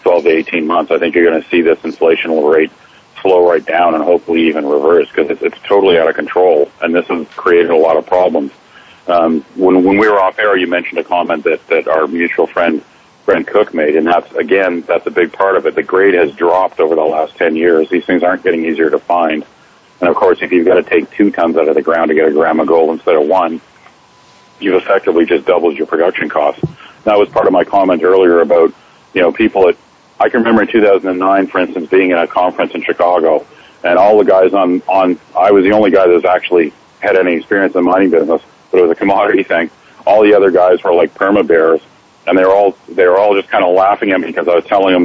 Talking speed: 250 wpm